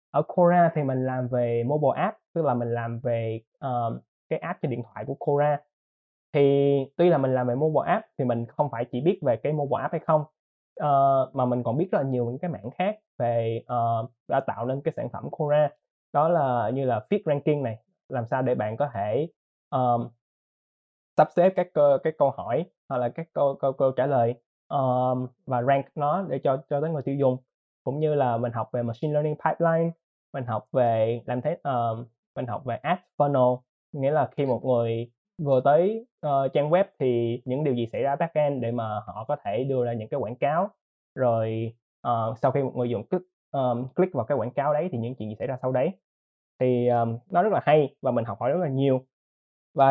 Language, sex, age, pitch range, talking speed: Vietnamese, male, 20-39, 120-150 Hz, 225 wpm